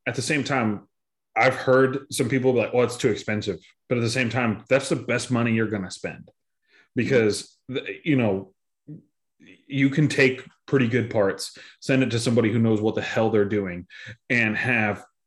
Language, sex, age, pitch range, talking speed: English, male, 30-49, 110-130 Hz, 195 wpm